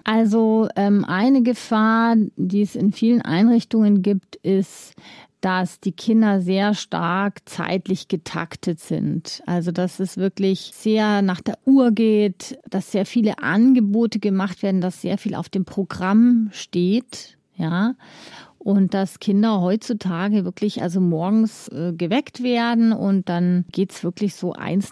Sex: female